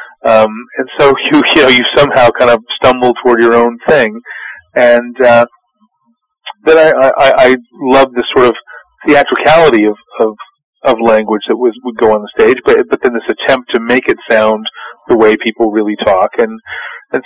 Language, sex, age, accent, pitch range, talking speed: English, male, 30-49, American, 110-135 Hz, 185 wpm